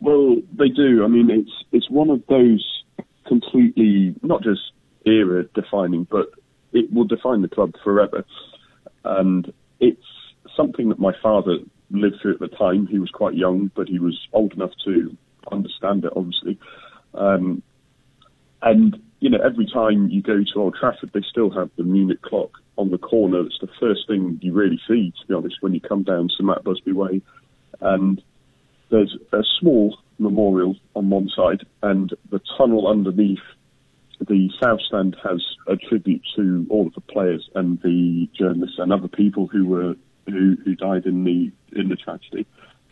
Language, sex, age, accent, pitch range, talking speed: English, male, 40-59, British, 95-115 Hz, 170 wpm